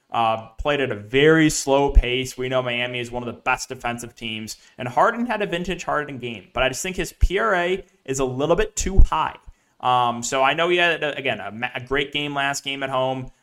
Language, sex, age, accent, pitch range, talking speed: English, male, 20-39, American, 125-150 Hz, 230 wpm